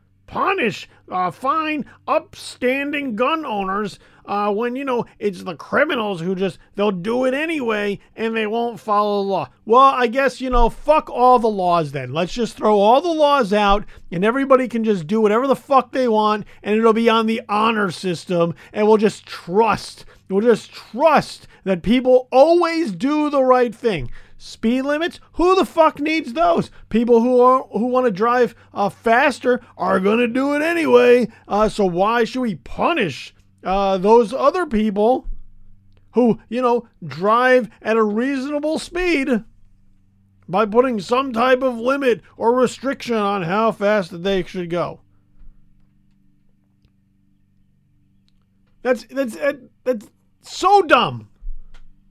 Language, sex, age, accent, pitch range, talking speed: English, male, 40-59, American, 180-255 Hz, 150 wpm